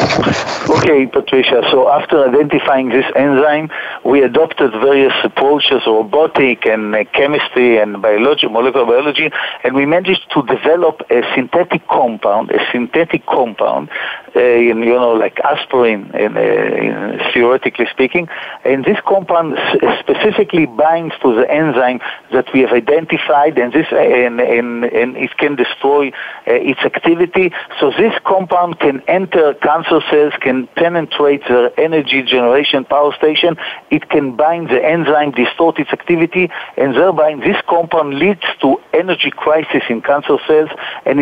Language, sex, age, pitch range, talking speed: English, male, 50-69, 130-170 Hz, 140 wpm